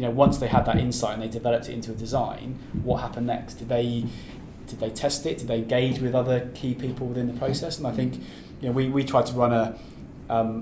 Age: 20-39